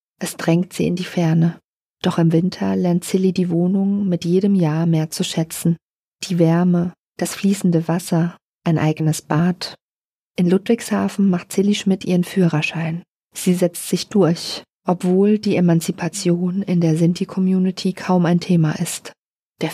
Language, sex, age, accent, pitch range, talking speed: German, female, 40-59, German, 165-195 Hz, 150 wpm